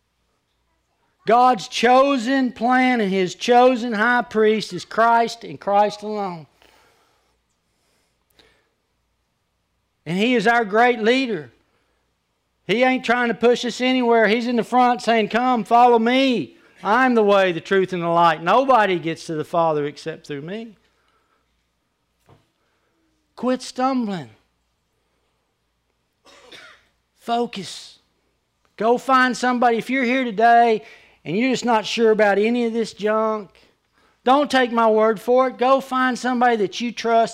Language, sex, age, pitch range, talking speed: English, male, 60-79, 180-240 Hz, 130 wpm